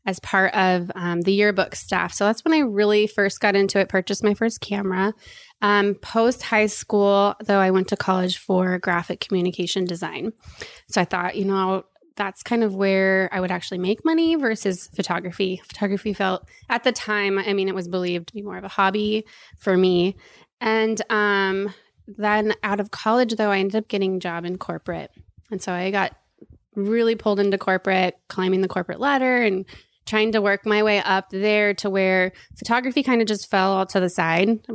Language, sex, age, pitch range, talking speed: English, female, 20-39, 185-215 Hz, 195 wpm